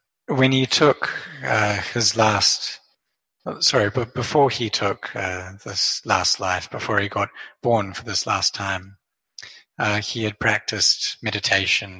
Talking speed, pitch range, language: 140 wpm, 100-115 Hz, English